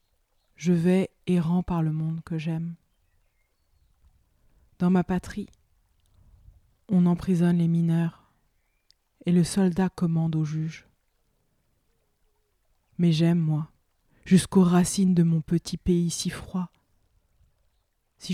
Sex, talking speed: female, 110 wpm